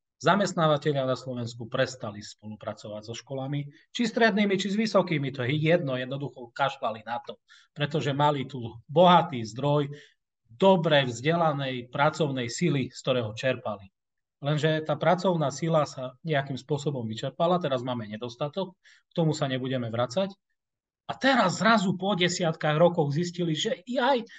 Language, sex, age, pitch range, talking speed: Slovak, male, 30-49, 120-170 Hz, 140 wpm